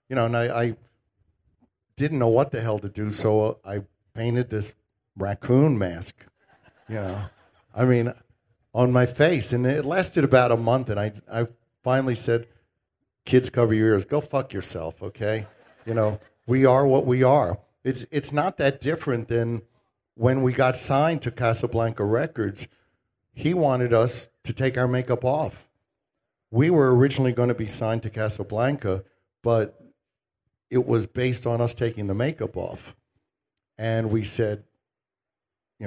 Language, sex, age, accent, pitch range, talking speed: English, male, 60-79, American, 105-125 Hz, 155 wpm